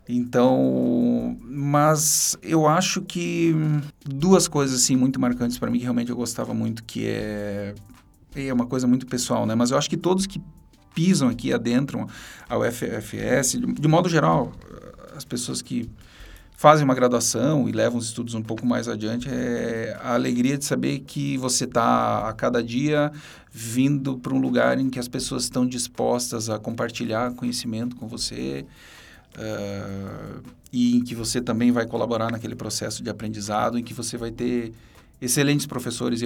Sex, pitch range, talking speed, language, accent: male, 115-130 Hz, 165 wpm, Portuguese, Brazilian